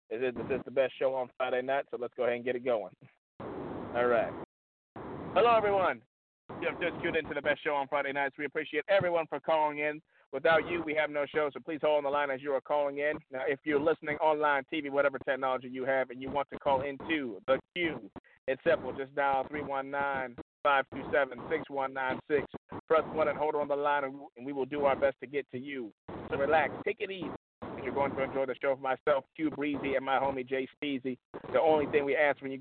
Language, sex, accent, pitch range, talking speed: English, male, American, 130-150 Hz, 230 wpm